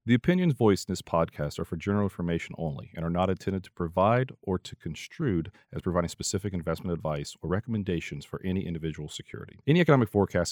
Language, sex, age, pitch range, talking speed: English, male, 40-59, 90-120 Hz, 195 wpm